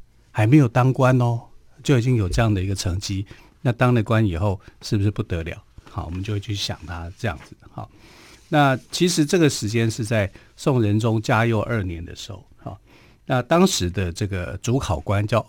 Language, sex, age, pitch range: Chinese, male, 50-69, 100-130 Hz